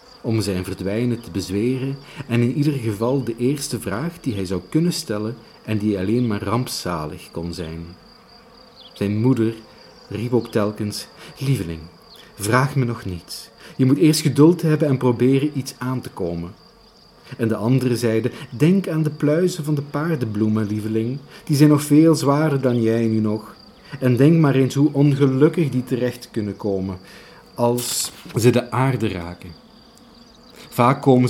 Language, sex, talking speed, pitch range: Dutch, male, 160 wpm, 105-145 Hz